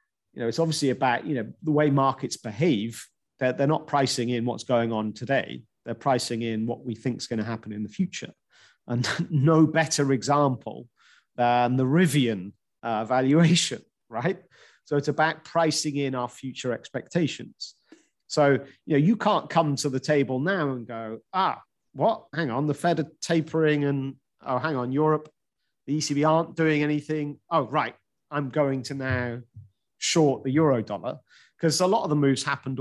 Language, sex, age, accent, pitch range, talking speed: English, male, 40-59, British, 115-150 Hz, 175 wpm